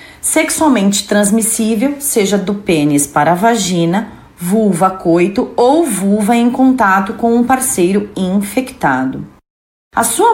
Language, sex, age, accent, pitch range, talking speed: Portuguese, female, 30-49, Brazilian, 200-285 Hz, 115 wpm